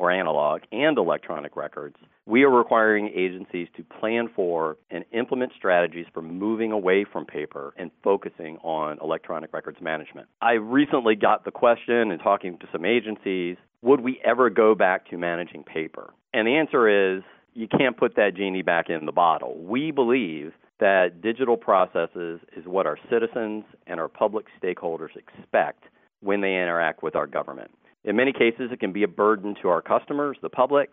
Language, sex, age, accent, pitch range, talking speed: English, male, 40-59, American, 85-115 Hz, 175 wpm